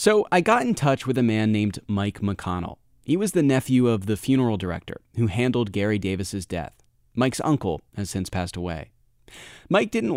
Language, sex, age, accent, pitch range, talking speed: English, male, 30-49, American, 100-130 Hz, 190 wpm